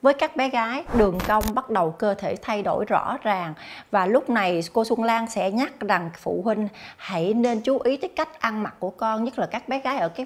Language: Vietnamese